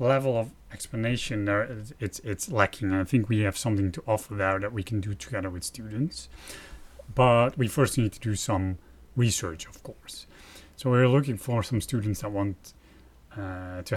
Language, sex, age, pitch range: English, male, 30-49, 95-120 Hz